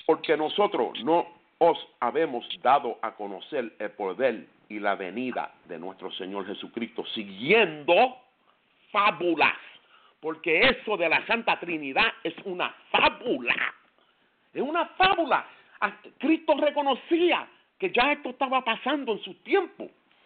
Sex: male